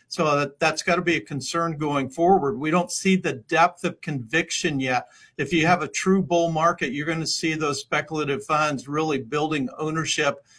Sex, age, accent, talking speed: male, 50-69, American, 180 wpm